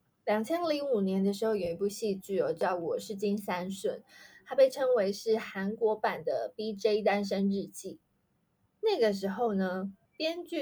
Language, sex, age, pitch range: Chinese, female, 20-39, 190-255 Hz